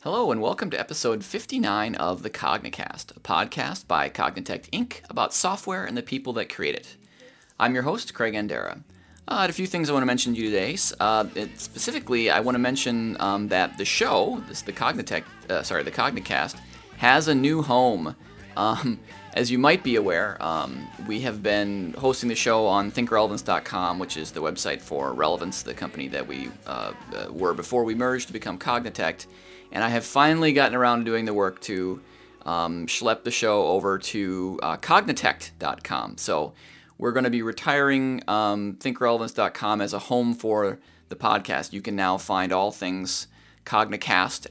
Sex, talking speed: male, 185 wpm